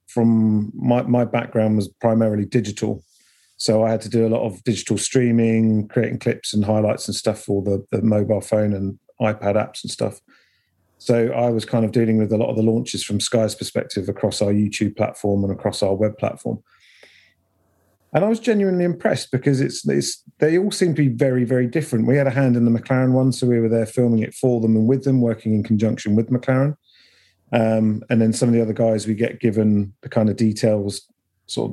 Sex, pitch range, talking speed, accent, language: male, 105-125 Hz, 215 wpm, British, English